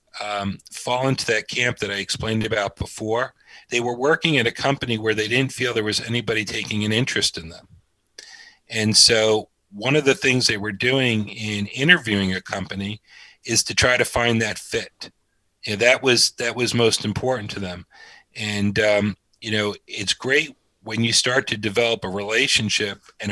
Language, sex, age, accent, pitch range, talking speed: English, male, 40-59, American, 105-120 Hz, 185 wpm